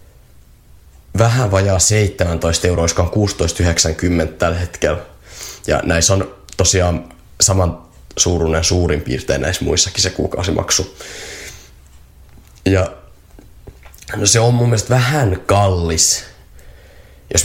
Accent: native